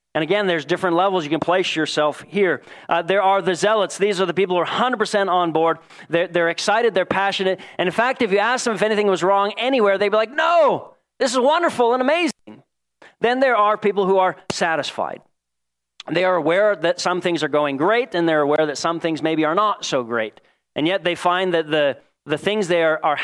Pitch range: 130-180 Hz